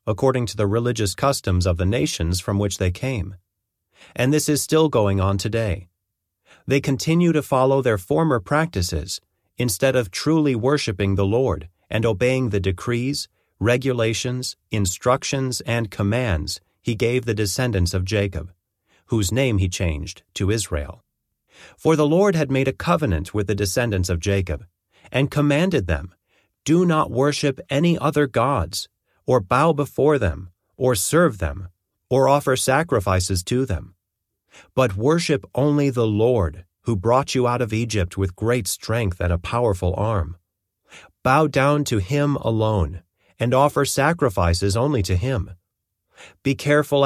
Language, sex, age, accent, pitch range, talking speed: English, male, 30-49, American, 95-130 Hz, 150 wpm